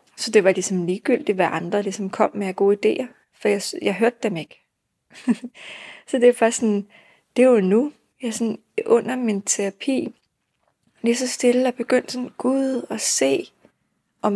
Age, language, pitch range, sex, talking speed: 20-39, Danish, 195-230 Hz, female, 170 wpm